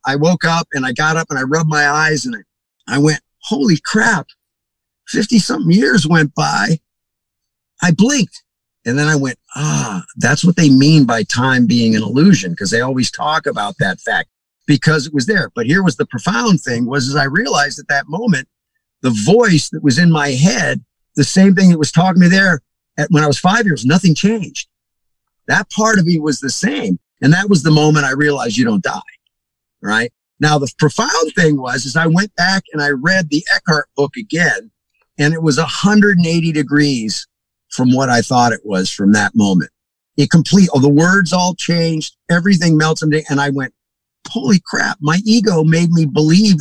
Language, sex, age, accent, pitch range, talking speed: English, male, 50-69, American, 145-190 Hz, 195 wpm